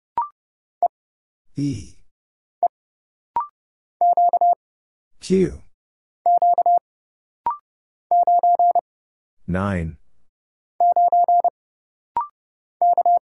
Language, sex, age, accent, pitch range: English, female, 50-69, American, 295-350 Hz